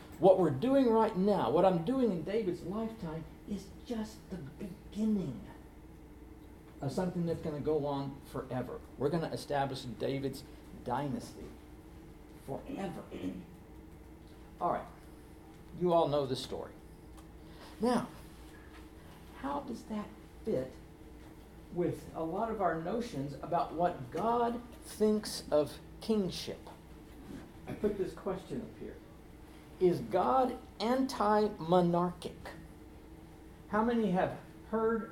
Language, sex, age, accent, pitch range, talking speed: English, male, 60-79, American, 145-220 Hz, 115 wpm